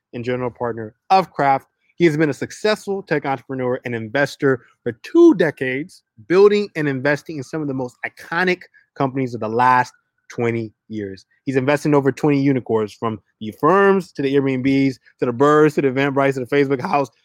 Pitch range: 125-165 Hz